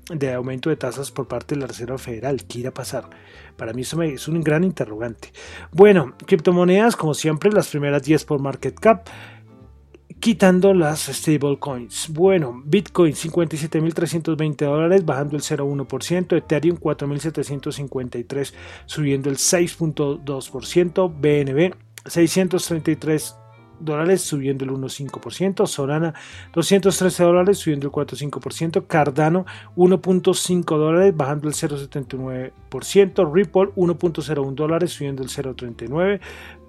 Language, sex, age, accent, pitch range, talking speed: Spanish, male, 30-49, Argentinian, 135-175 Hz, 115 wpm